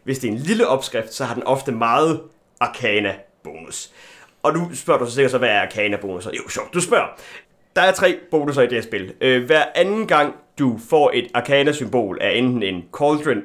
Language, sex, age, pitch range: Danish, male, 30-49, 130-180 Hz